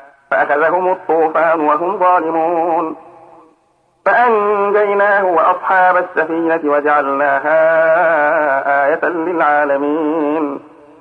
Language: Arabic